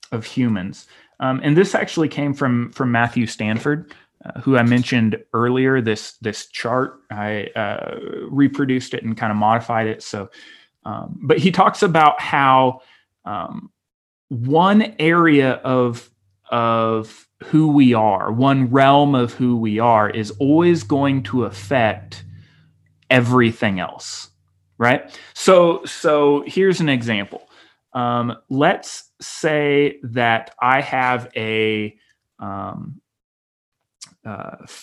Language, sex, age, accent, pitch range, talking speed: English, male, 30-49, American, 110-140 Hz, 120 wpm